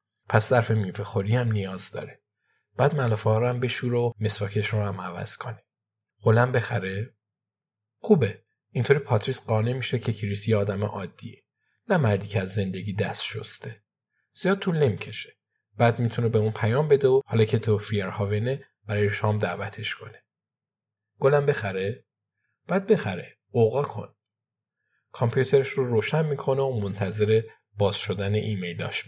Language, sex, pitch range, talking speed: Persian, male, 105-125 Hz, 140 wpm